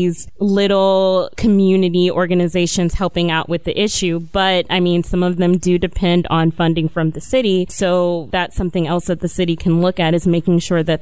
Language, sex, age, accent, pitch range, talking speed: English, female, 20-39, American, 170-190 Hz, 195 wpm